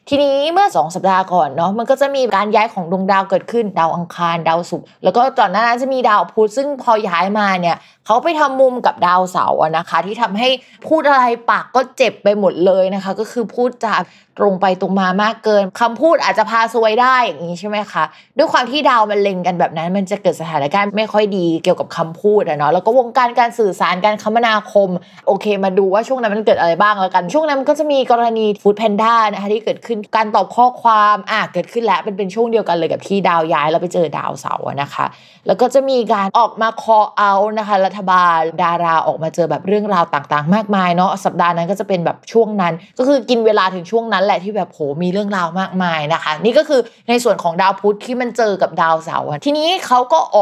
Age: 20-39